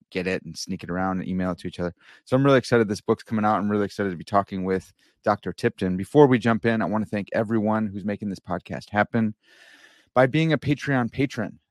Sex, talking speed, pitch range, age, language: male, 245 wpm, 100-120 Hz, 30-49, English